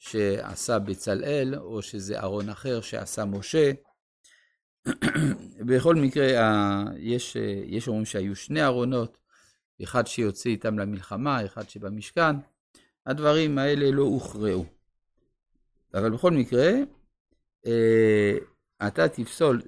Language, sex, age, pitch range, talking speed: Hebrew, male, 50-69, 105-145 Hz, 95 wpm